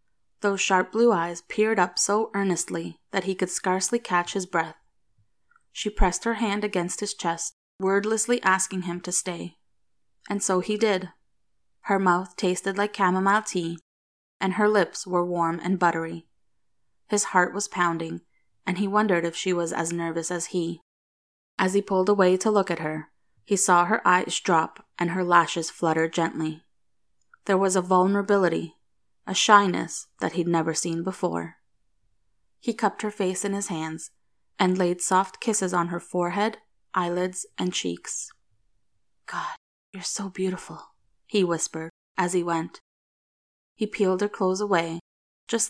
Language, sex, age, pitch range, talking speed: English, female, 20-39, 165-195 Hz, 155 wpm